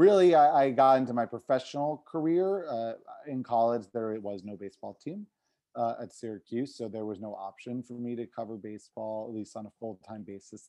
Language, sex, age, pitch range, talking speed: English, male, 30-49, 105-125 Hz, 195 wpm